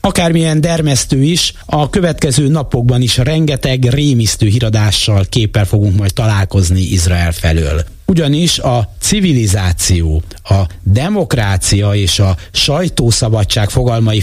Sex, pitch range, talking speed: male, 100-145 Hz, 105 wpm